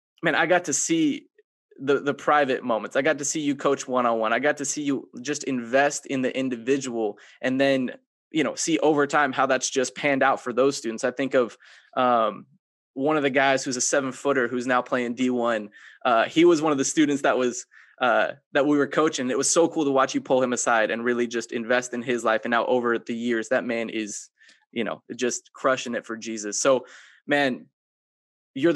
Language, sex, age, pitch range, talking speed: English, male, 20-39, 120-145 Hz, 220 wpm